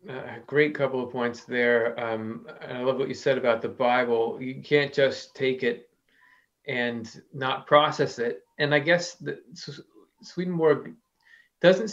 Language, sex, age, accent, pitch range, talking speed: English, male, 30-49, American, 120-155 Hz, 160 wpm